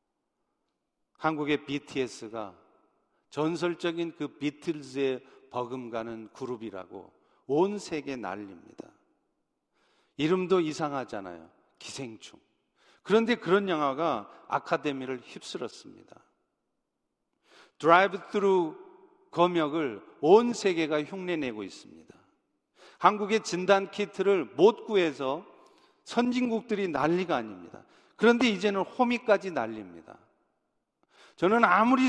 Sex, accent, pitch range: male, native, 145-205 Hz